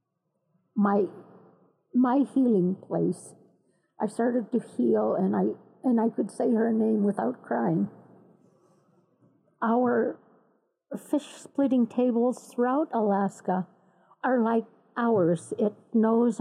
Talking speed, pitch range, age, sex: 100 wpm, 195-240 Hz, 50-69, female